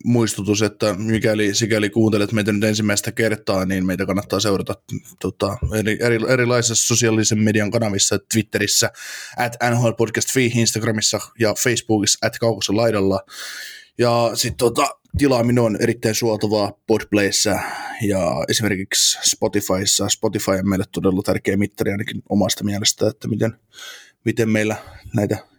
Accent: native